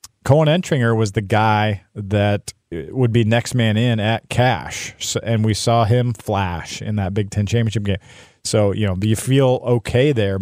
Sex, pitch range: male, 100-120 Hz